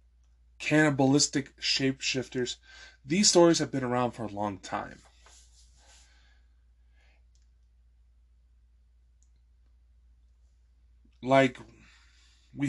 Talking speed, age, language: 60 wpm, 20-39, English